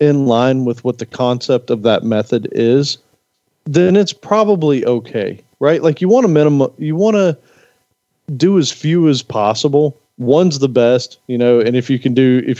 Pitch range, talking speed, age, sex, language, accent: 115-150 Hz, 185 wpm, 40-59, male, English, American